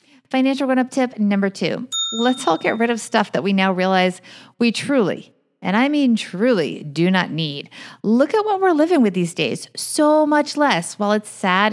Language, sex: English, female